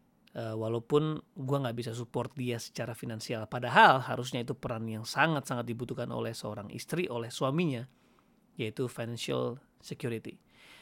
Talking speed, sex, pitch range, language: 130 wpm, male, 120-150 Hz, Indonesian